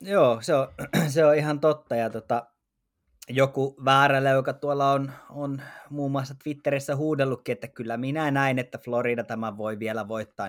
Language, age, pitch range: Finnish, 20-39, 110-135 Hz